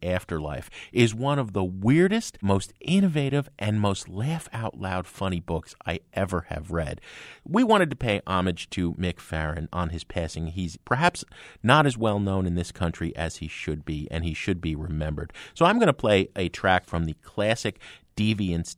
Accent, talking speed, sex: American, 180 wpm, male